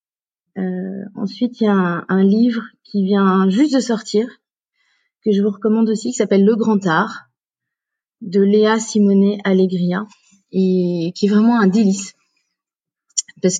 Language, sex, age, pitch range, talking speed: French, female, 30-49, 190-220 Hz, 150 wpm